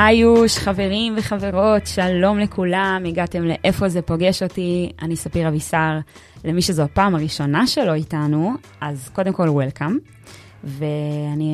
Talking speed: 125 wpm